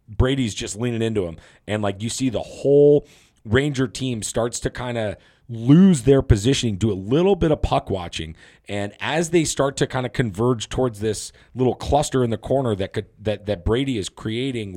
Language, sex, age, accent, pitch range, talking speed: English, male, 40-59, American, 100-130 Hz, 200 wpm